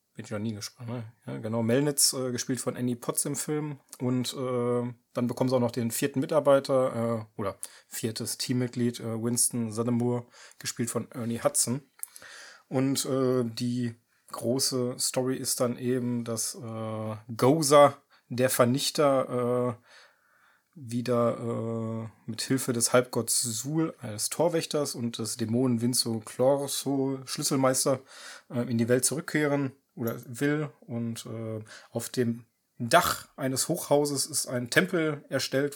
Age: 30-49